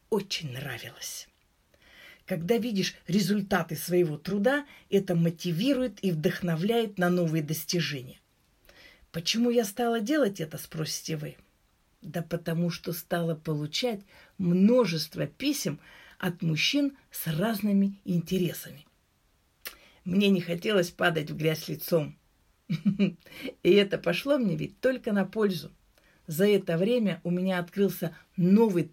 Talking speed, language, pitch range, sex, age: 115 wpm, Russian, 165-200 Hz, female, 50-69